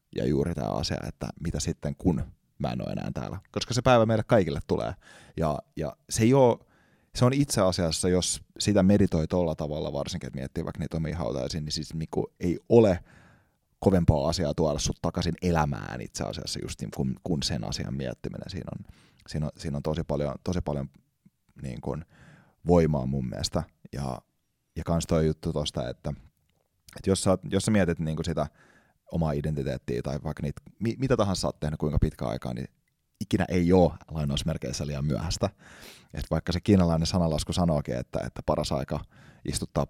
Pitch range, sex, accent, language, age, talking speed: 75-100 Hz, male, native, Finnish, 30-49, 180 wpm